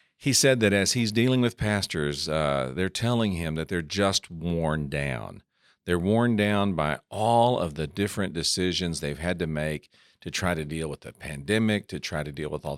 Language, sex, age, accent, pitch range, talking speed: English, male, 50-69, American, 75-100 Hz, 200 wpm